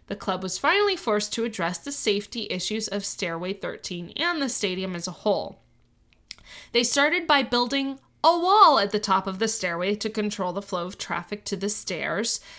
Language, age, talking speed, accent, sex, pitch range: English, 20-39, 190 wpm, American, female, 195-280 Hz